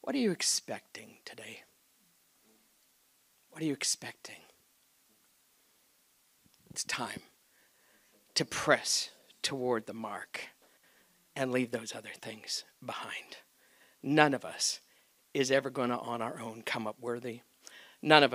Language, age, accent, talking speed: English, 60-79, American, 120 wpm